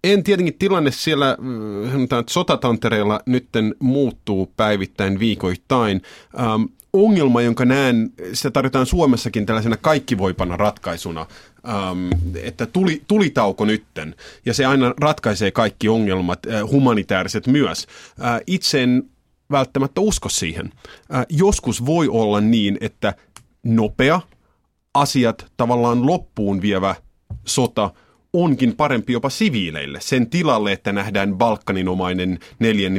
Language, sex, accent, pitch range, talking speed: Finnish, male, native, 100-130 Hz, 115 wpm